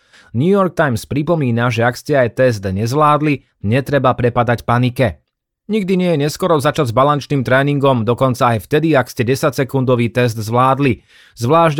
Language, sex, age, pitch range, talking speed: Slovak, male, 30-49, 120-145 Hz, 155 wpm